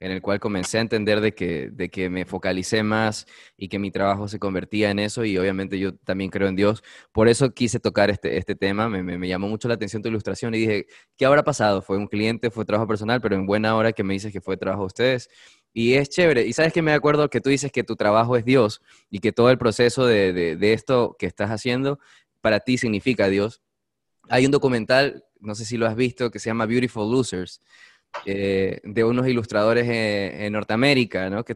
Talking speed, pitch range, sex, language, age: 230 wpm, 100-120 Hz, male, Spanish, 20-39